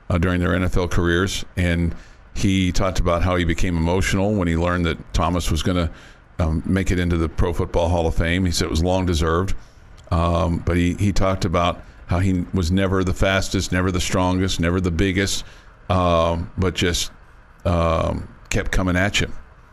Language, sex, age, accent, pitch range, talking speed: English, male, 50-69, American, 80-95 Hz, 190 wpm